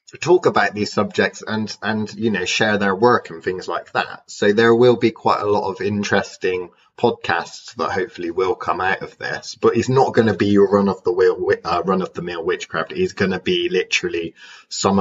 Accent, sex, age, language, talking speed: British, male, 20-39, English, 220 wpm